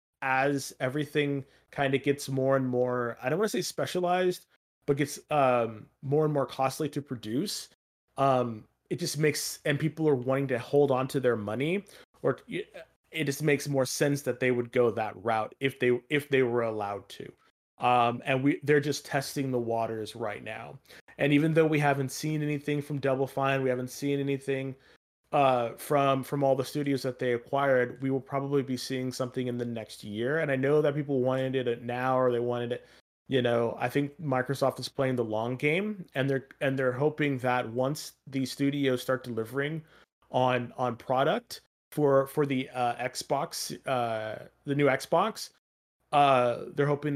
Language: English